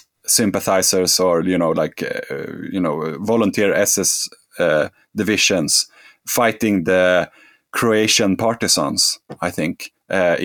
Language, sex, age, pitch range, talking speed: English, male, 30-49, 90-100 Hz, 110 wpm